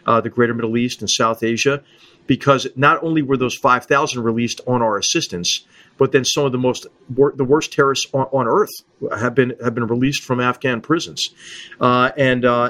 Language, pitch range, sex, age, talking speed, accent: English, 120-145 Hz, male, 40-59, 205 wpm, American